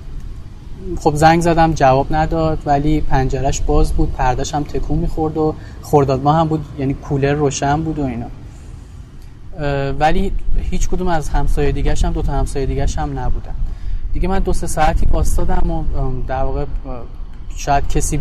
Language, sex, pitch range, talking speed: Persian, male, 130-155 Hz, 155 wpm